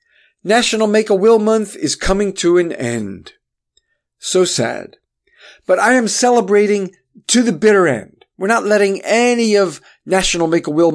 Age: 50-69